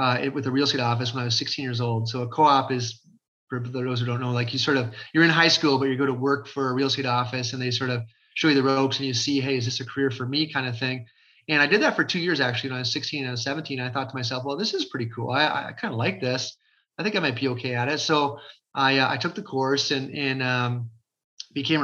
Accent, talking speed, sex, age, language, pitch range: American, 310 wpm, male, 30-49, English, 130-165 Hz